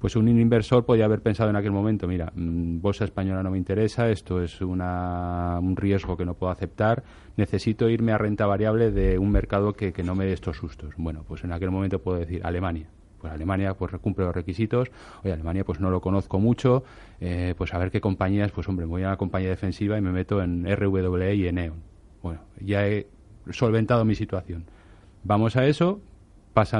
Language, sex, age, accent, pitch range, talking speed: Spanish, male, 30-49, Spanish, 90-110 Hz, 205 wpm